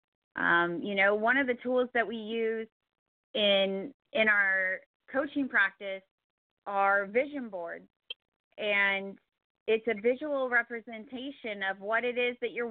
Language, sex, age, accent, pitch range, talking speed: English, female, 30-49, American, 200-255 Hz, 135 wpm